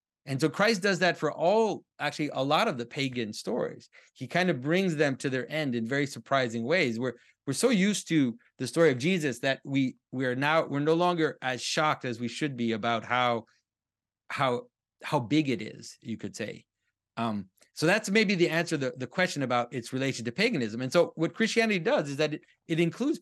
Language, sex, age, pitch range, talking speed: English, male, 30-49, 130-175 Hz, 215 wpm